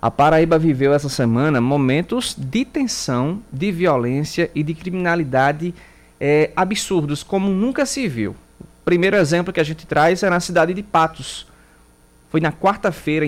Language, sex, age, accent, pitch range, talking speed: Portuguese, male, 20-39, Brazilian, 135-185 Hz, 150 wpm